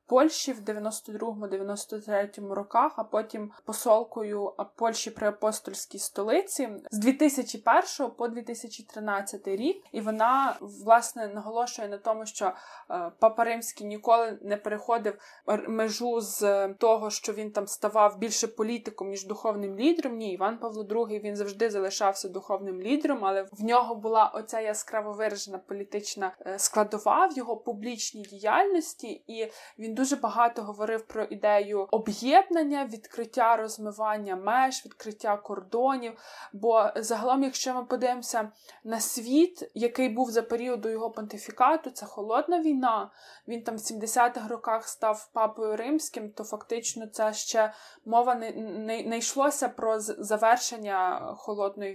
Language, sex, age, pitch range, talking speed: Ukrainian, female, 20-39, 210-240 Hz, 125 wpm